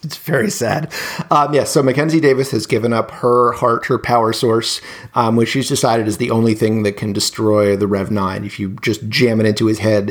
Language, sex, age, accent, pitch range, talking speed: English, male, 30-49, American, 110-130 Hz, 220 wpm